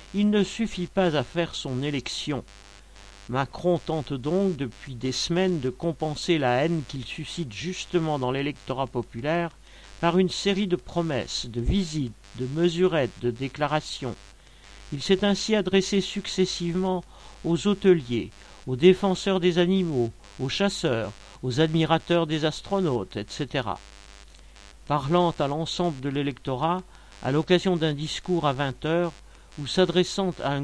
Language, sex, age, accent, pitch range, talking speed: French, male, 50-69, French, 130-175 Hz, 135 wpm